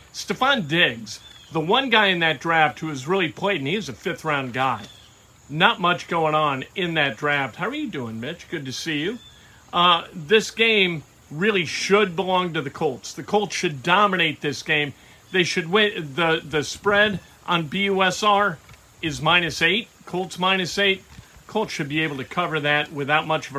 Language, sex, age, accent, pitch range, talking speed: English, male, 50-69, American, 145-205 Hz, 185 wpm